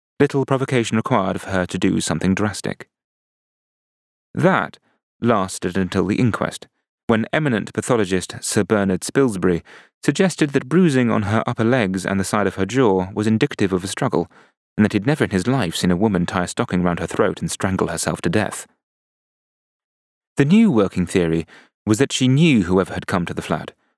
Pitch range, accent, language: 95-125 Hz, British, English